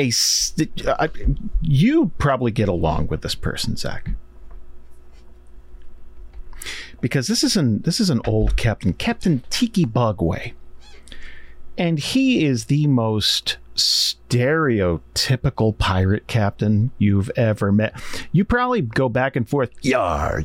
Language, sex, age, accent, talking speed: English, male, 40-59, American, 105 wpm